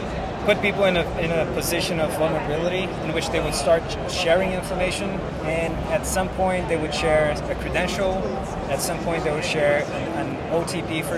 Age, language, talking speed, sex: 20-39, English, 190 wpm, male